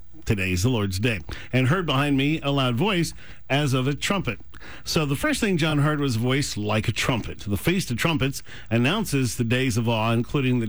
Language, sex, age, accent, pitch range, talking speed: English, male, 50-69, American, 115-140 Hz, 220 wpm